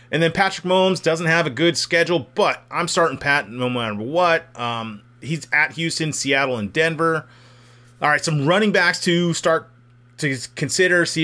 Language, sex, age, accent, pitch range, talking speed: English, male, 30-49, American, 125-160 Hz, 175 wpm